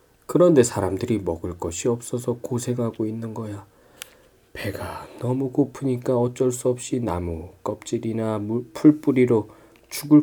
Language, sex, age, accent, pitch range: Korean, male, 20-39, native, 115-145 Hz